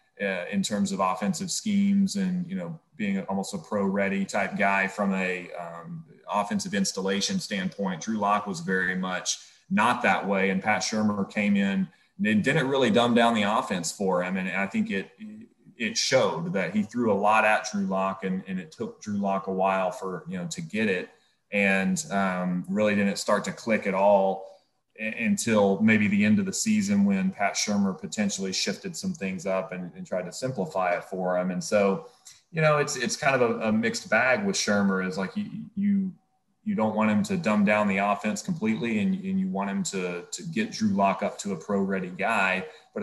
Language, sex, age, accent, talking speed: English, male, 30-49, American, 210 wpm